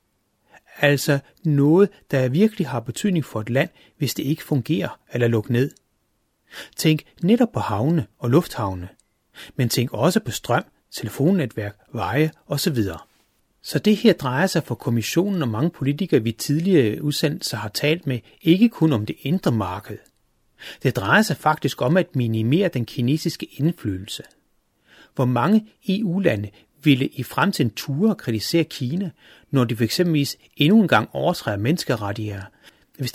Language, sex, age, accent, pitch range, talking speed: Danish, male, 30-49, native, 115-175 Hz, 150 wpm